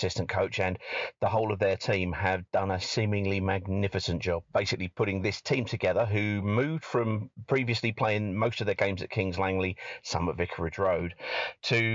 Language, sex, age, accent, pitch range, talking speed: English, male, 40-59, British, 95-120 Hz, 180 wpm